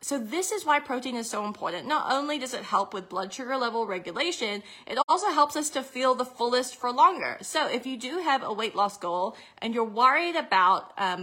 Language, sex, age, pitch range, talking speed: English, female, 20-39, 205-265 Hz, 225 wpm